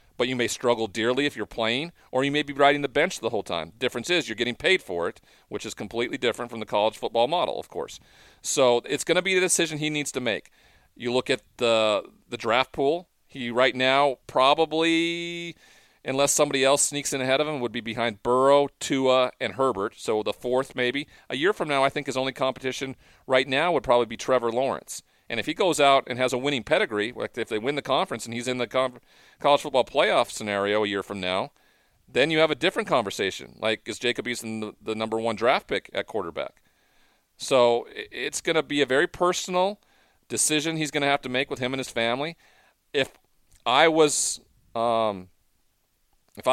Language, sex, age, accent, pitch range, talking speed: English, male, 40-59, American, 115-145 Hz, 210 wpm